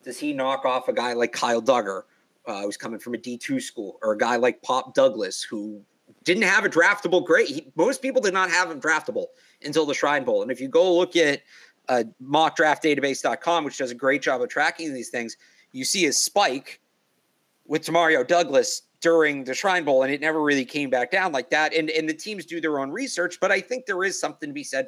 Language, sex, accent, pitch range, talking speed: English, male, American, 140-175 Hz, 225 wpm